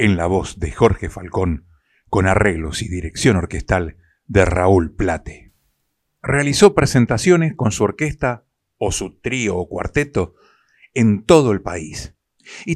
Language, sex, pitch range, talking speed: Spanish, male, 95-125 Hz, 135 wpm